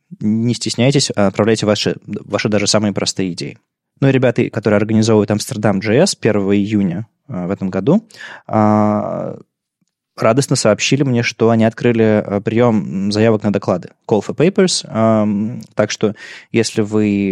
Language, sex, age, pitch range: Russian, male, 20-39, 100-120 Hz